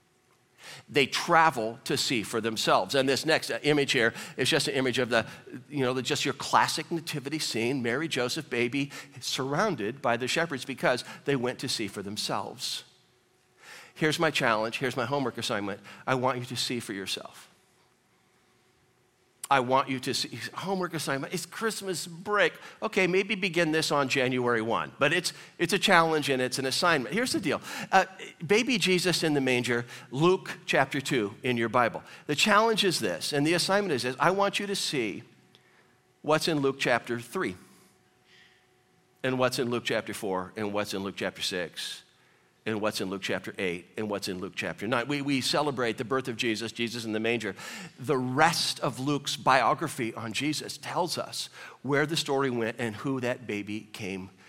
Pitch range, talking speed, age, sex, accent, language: 125-160 Hz, 180 wpm, 50-69, male, American, English